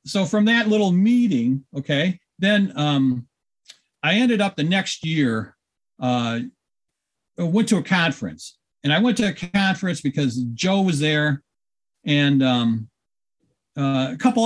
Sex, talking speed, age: male, 140 wpm, 50-69